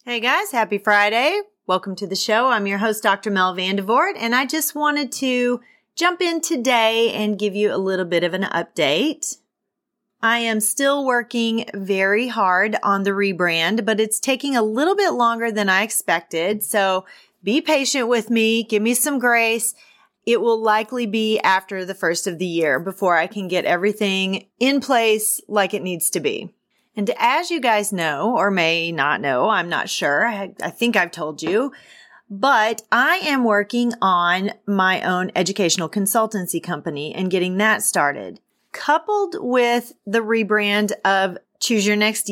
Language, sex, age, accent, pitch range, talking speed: English, female, 30-49, American, 190-240 Hz, 170 wpm